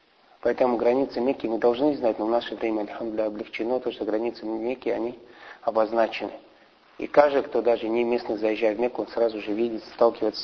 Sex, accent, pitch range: male, native, 115-145 Hz